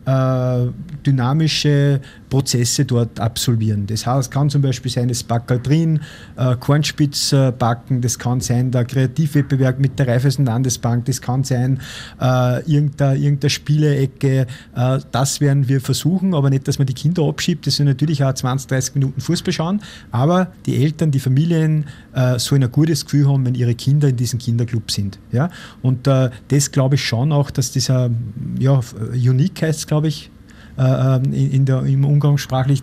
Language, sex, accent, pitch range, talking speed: German, male, Swiss, 125-145 Hz, 165 wpm